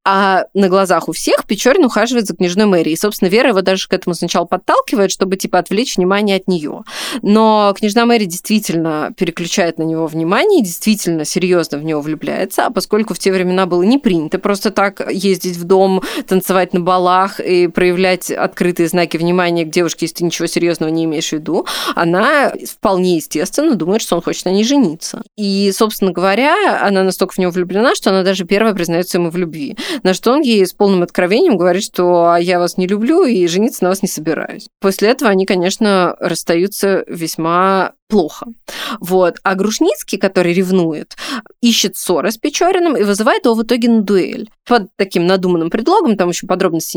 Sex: female